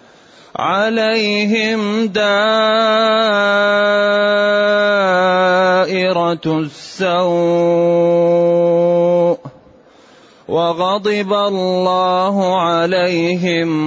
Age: 30-49